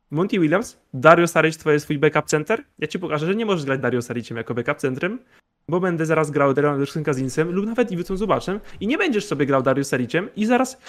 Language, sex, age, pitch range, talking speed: Polish, male, 20-39, 145-195 Hz, 220 wpm